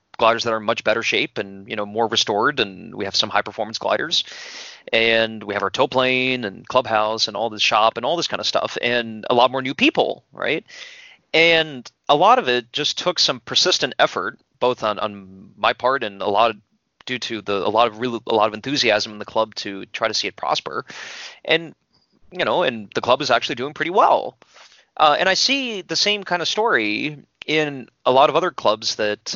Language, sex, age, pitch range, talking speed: English, male, 30-49, 110-150 Hz, 220 wpm